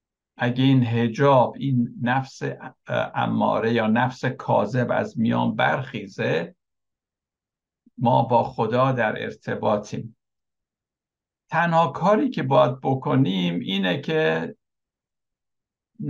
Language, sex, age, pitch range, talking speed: Persian, male, 60-79, 115-135 Hz, 90 wpm